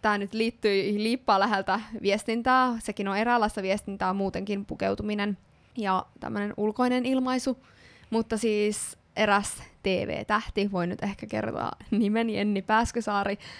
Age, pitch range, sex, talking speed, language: 20-39, 195-225 Hz, female, 120 wpm, Finnish